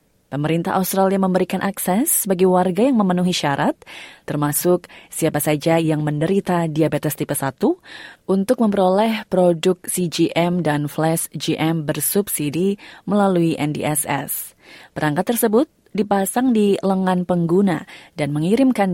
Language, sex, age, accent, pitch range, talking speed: Indonesian, female, 20-39, native, 155-200 Hz, 110 wpm